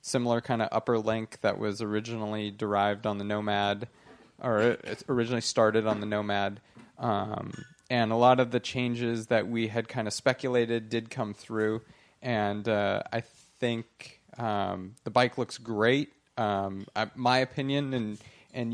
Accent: American